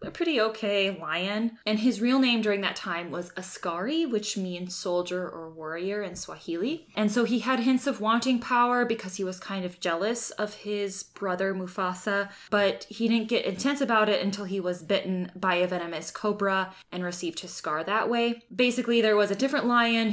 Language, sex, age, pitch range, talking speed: English, female, 20-39, 175-220 Hz, 195 wpm